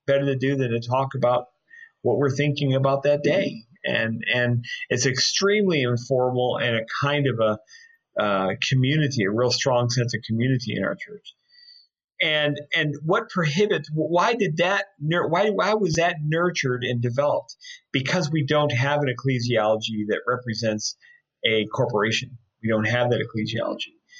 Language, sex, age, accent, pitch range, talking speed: English, male, 40-59, American, 120-170 Hz, 155 wpm